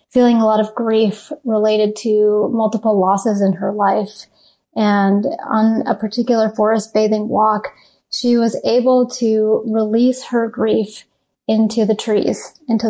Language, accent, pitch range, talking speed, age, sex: English, American, 200-240 Hz, 140 wpm, 30-49, female